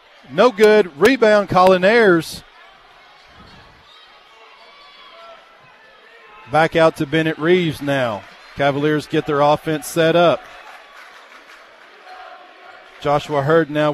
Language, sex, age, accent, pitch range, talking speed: English, male, 40-59, American, 155-195 Hz, 85 wpm